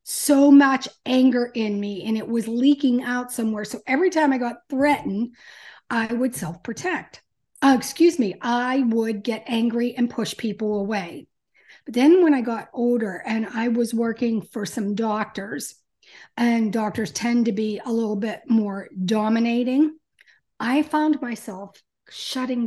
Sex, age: female, 40-59